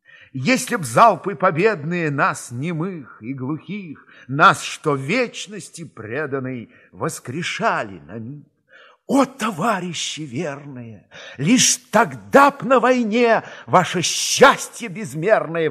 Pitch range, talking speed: 125-200 Hz, 95 wpm